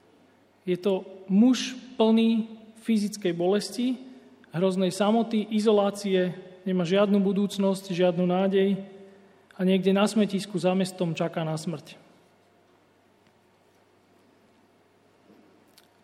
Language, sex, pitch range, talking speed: Slovak, male, 175-200 Hz, 90 wpm